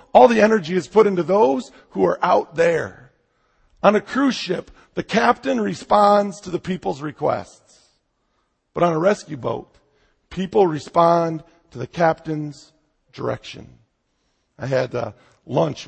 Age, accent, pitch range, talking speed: 50-69, American, 120-180 Hz, 140 wpm